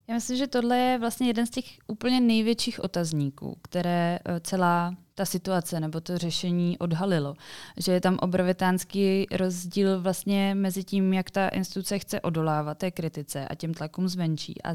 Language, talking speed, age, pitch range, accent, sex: Czech, 165 wpm, 20-39, 155-180 Hz, native, female